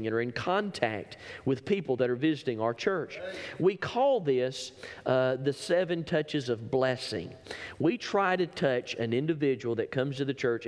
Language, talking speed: English, 175 wpm